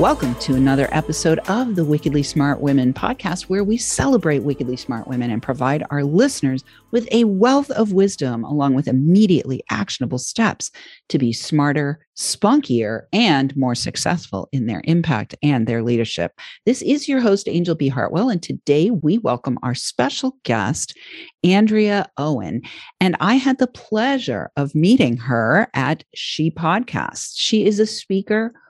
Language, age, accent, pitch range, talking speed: English, 50-69, American, 135-210 Hz, 155 wpm